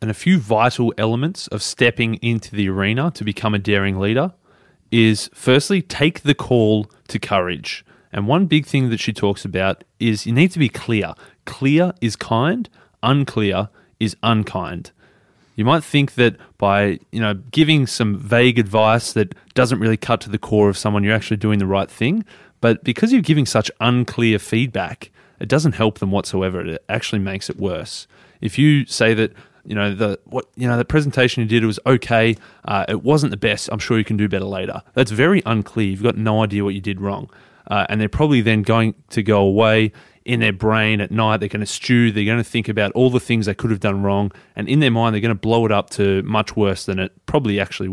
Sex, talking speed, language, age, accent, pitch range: male, 215 wpm, English, 20-39, Australian, 105-125 Hz